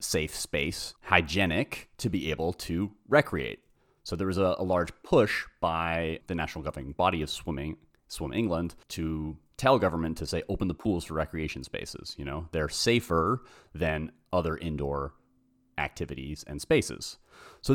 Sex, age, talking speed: male, 30-49, 155 wpm